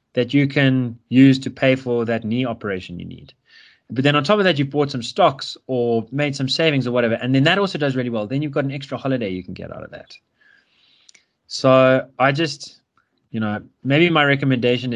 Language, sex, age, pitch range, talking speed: English, male, 20-39, 100-135 Hz, 220 wpm